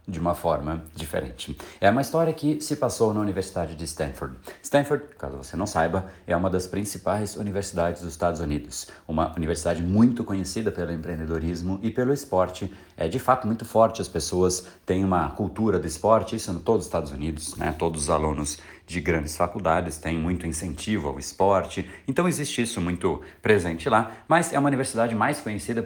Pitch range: 85-115 Hz